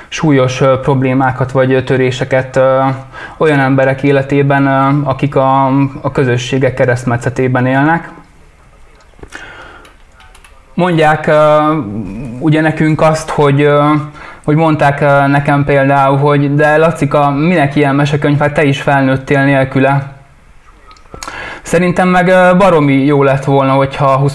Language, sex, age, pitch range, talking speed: Hungarian, male, 20-39, 130-150 Hz, 100 wpm